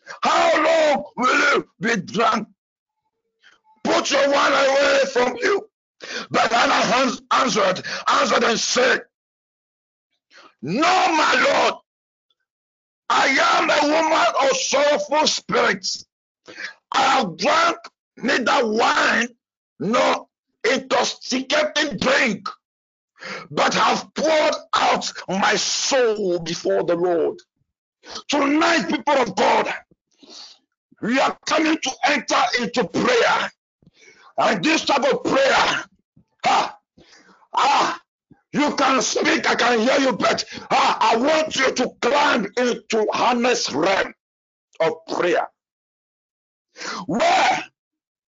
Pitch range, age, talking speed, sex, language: 245-330 Hz, 60-79, 100 wpm, male, English